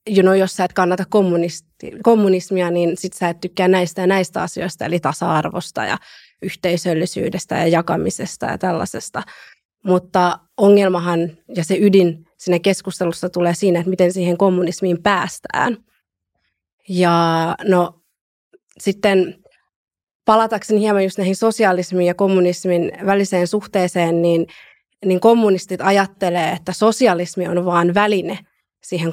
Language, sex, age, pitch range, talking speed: Finnish, female, 20-39, 175-195 Hz, 125 wpm